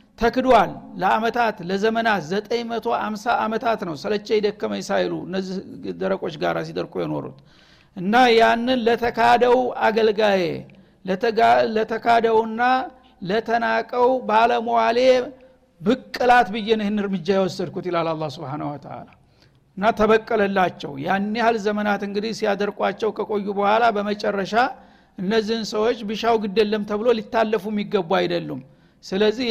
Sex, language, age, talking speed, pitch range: male, Amharic, 60-79, 100 wpm, 195-235 Hz